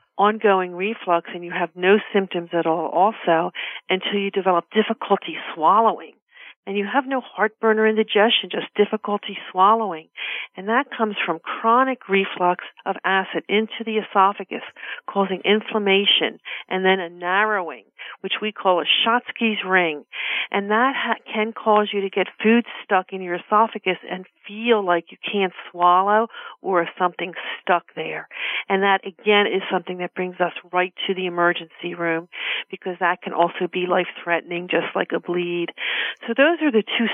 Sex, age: female, 50-69